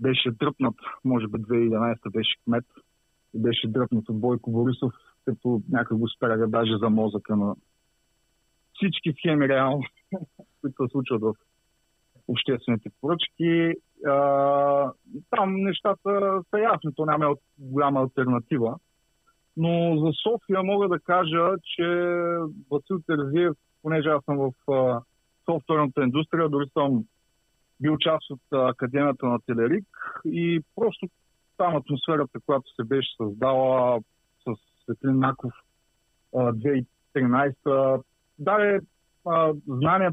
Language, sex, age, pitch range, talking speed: Bulgarian, male, 50-69, 125-160 Hz, 120 wpm